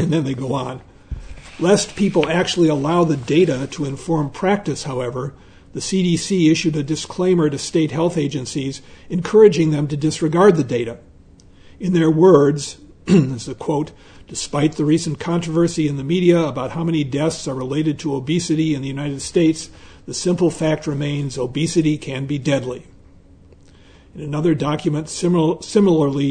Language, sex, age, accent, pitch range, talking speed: English, male, 50-69, American, 130-165 Hz, 155 wpm